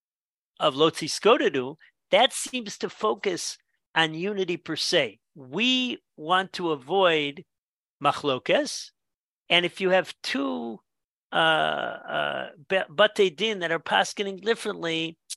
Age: 50-69